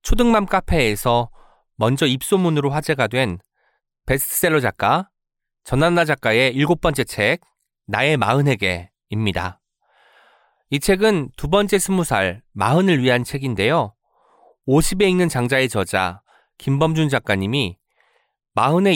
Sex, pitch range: male, 110-165 Hz